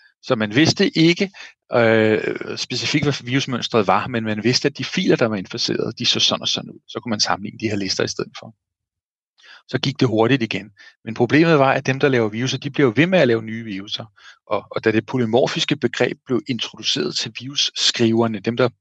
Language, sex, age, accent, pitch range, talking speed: Danish, male, 40-59, native, 110-135 Hz, 215 wpm